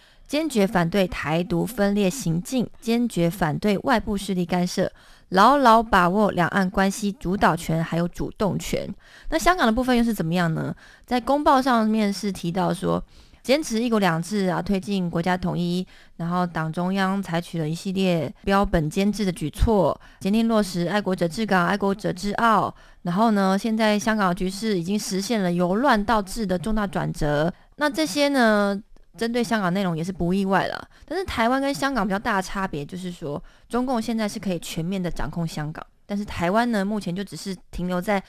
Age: 20-39